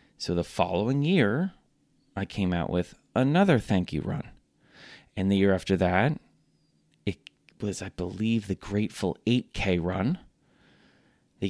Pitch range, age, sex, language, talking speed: 95-115 Hz, 30-49, male, English, 135 wpm